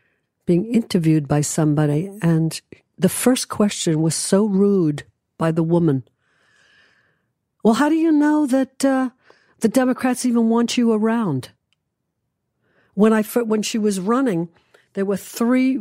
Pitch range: 170-230 Hz